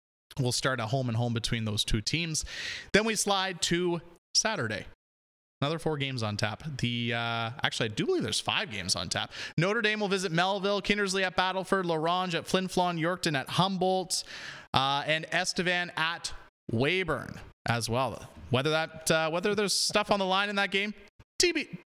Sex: male